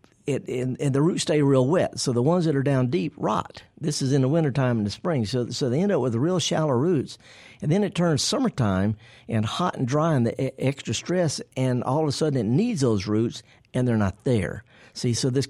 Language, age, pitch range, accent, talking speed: English, 50-69, 115-145 Hz, American, 235 wpm